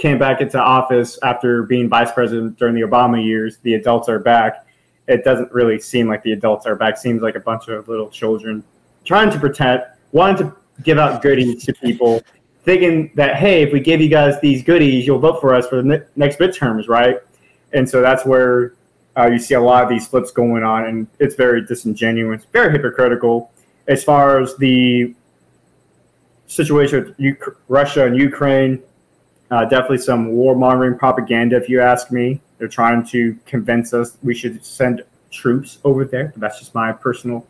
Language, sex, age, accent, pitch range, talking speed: English, male, 20-39, American, 115-130 Hz, 190 wpm